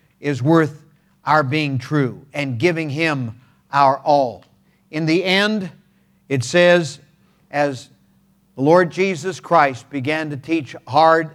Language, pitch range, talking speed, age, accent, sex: English, 135-190 Hz, 125 wpm, 50-69, American, male